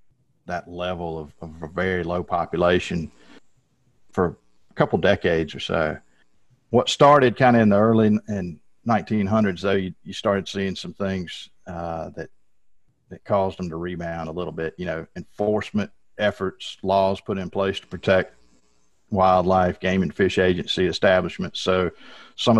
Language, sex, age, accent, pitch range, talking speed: English, male, 50-69, American, 85-100 Hz, 155 wpm